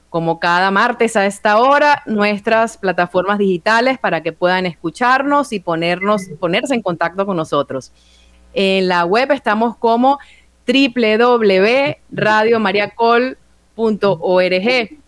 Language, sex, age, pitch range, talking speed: Spanish, female, 30-49, 195-250 Hz, 100 wpm